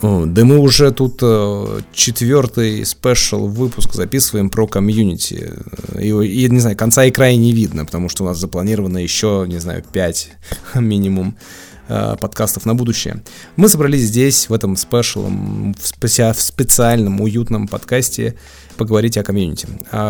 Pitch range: 95-110 Hz